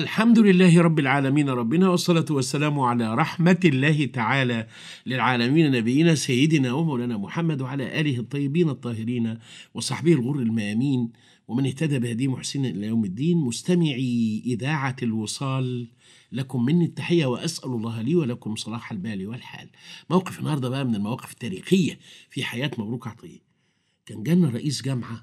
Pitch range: 120-170 Hz